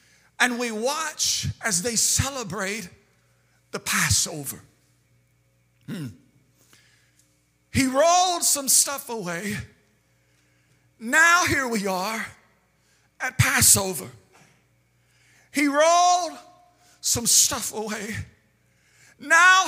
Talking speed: 80 wpm